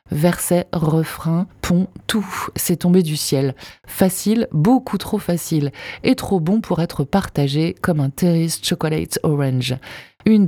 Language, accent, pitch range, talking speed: French, French, 155-195 Hz, 135 wpm